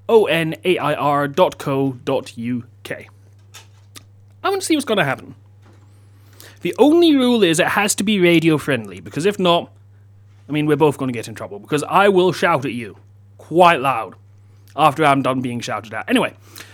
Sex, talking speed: male, 180 wpm